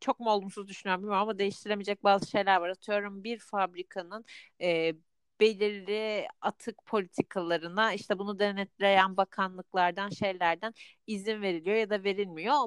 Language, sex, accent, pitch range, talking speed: Turkish, female, native, 175-220 Hz, 125 wpm